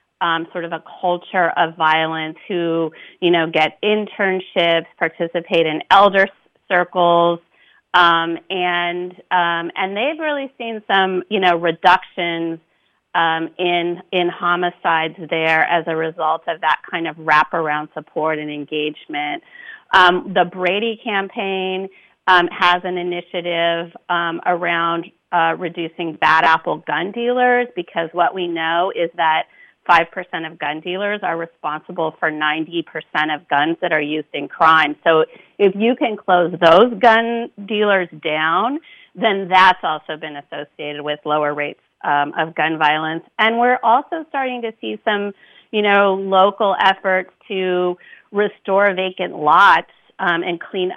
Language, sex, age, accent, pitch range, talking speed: English, female, 30-49, American, 160-195 Hz, 140 wpm